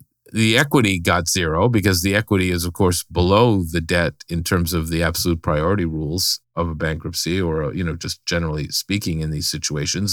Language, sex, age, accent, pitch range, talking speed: English, male, 50-69, American, 85-110 Hz, 190 wpm